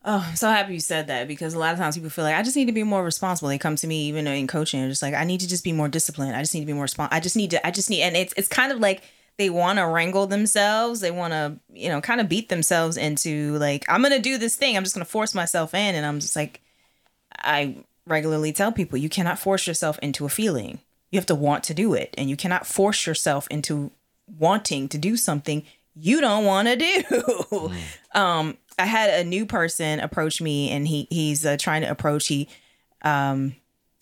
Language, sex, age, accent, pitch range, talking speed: English, female, 20-39, American, 150-220 Hz, 250 wpm